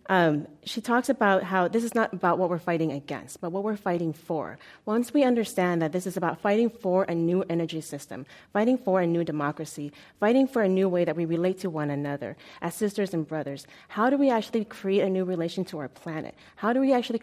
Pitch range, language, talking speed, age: 165-210 Hz, English, 230 wpm, 30-49